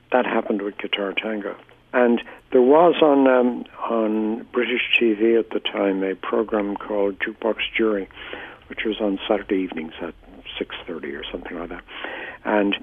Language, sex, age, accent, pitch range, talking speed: English, male, 60-79, American, 95-115 Hz, 155 wpm